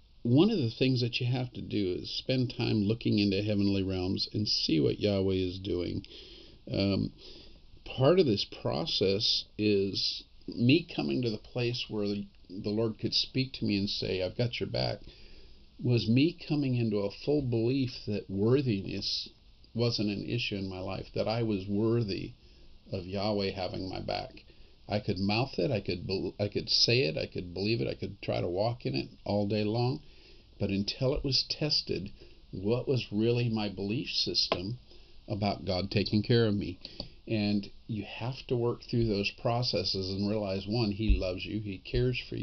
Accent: American